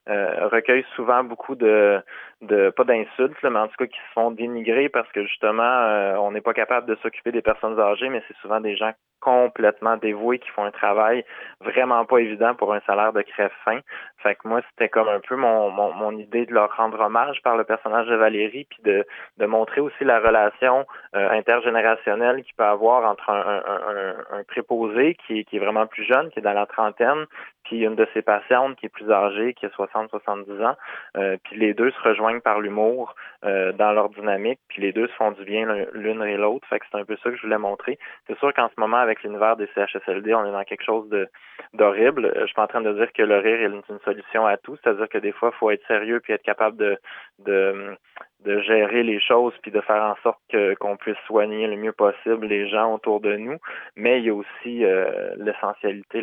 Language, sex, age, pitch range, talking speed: French, male, 20-39, 105-120 Hz, 230 wpm